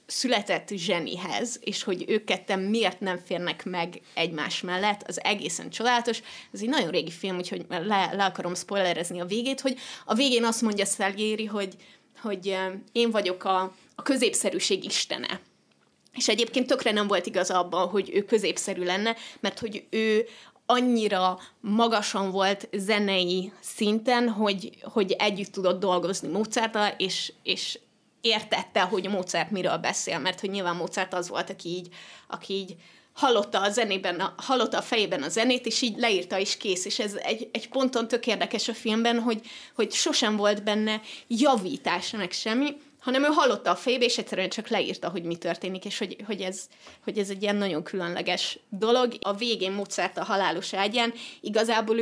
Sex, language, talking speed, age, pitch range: female, Hungarian, 165 wpm, 20-39, 190-230 Hz